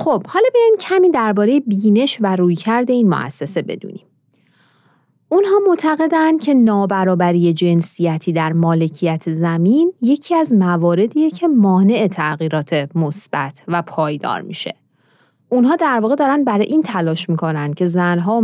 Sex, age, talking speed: female, 30-49, 135 wpm